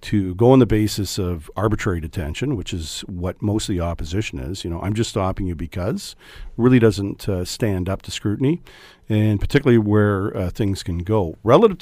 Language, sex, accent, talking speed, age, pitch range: English, male, American, 195 wpm, 50-69, 90-115 Hz